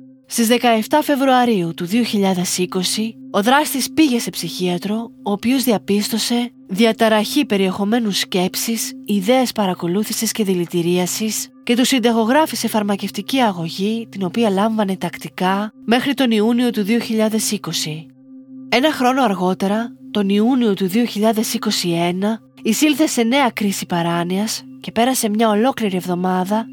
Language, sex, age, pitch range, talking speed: Greek, female, 30-49, 185-240 Hz, 115 wpm